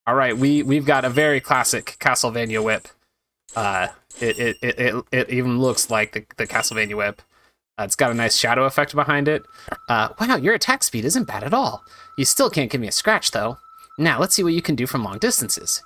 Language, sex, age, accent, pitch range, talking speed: English, male, 30-49, American, 125-205 Hz, 225 wpm